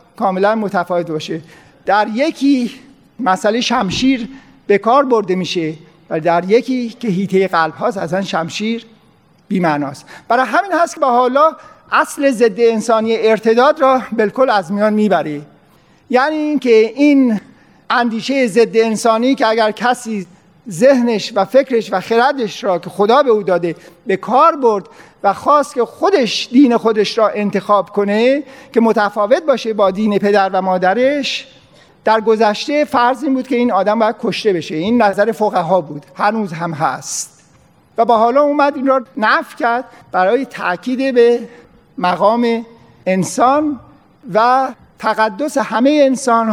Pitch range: 195-255 Hz